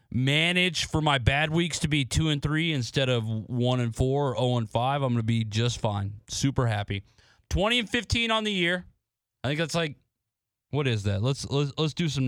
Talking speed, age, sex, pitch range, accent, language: 215 wpm, 30-49, male, 115-155 Hz, American, English